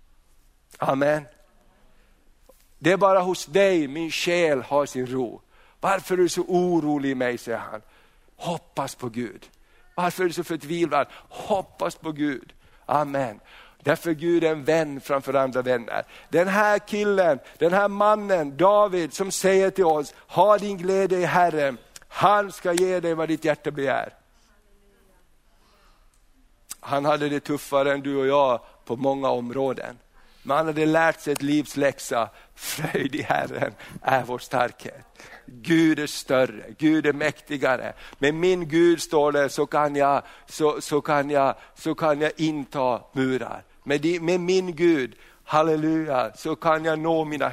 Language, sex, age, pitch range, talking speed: Swedish, male, 60-79, 140-170 Hz, 150 wpm